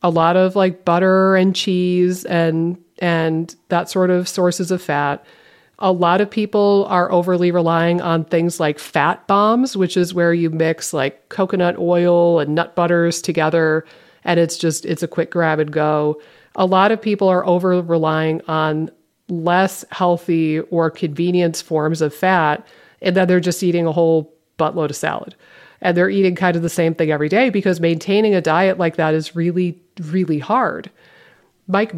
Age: 40-59